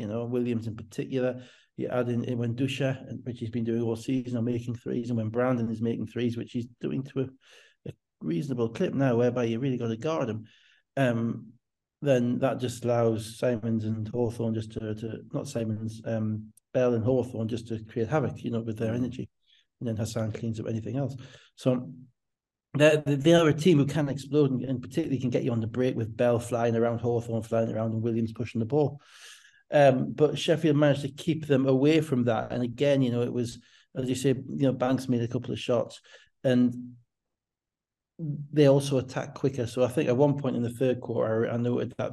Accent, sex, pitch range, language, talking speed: British, male, 115-130 Hz, English, 215 wpm